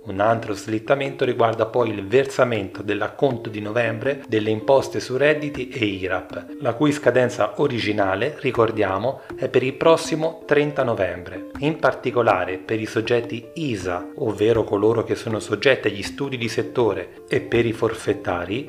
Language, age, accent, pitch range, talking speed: Italian, 30-49, native, 105-135 Hz, 150 wpm